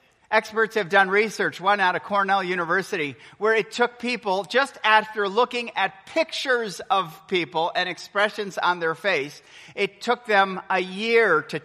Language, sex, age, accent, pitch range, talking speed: English, male, 40-59, American, 165-230 Hz, 160 wpm